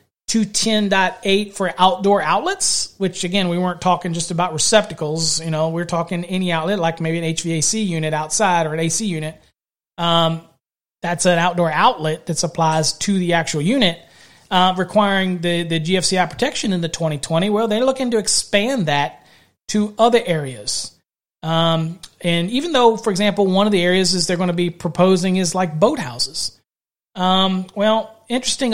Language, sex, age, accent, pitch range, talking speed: English, male, 30-49, American, 165-200 Hz, 170 wpm